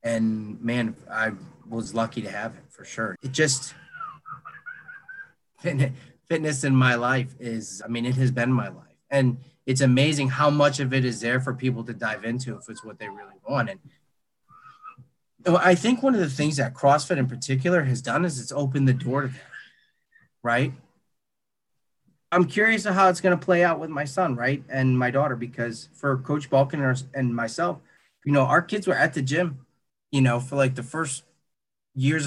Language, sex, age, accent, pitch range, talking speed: English, male, 30-49, American, 125-155 Hz, 190 wpm